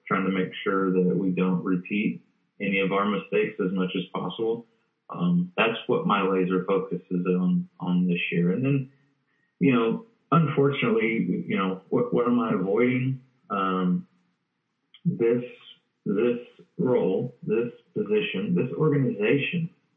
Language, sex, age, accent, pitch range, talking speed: English, male, 30-49, American, 90-140 Hz, 140 wpm